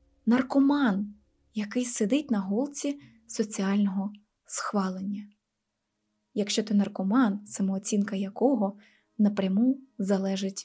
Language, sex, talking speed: Ukrainian, female, 80 wpm